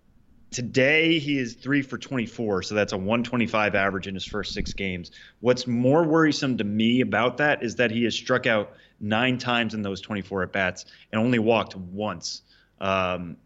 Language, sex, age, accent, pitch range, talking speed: English, male, 20-39, American, 100-125 Hz, 180 wpm